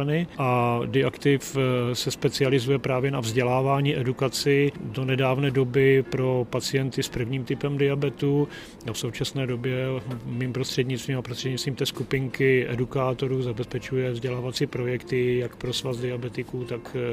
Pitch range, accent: 115-130 Hz, native